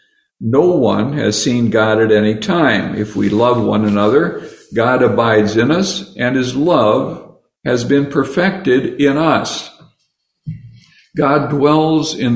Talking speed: 135 wpm